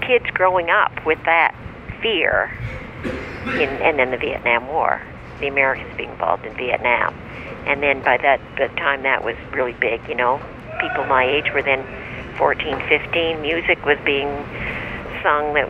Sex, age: female, 60-79